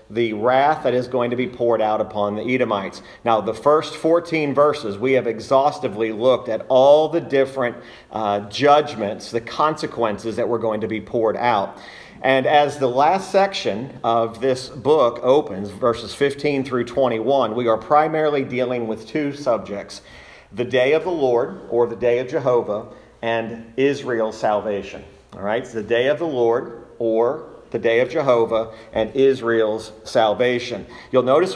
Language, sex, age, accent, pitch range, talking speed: English, male, 40-59, American, 110-145 Hz, 165 wpm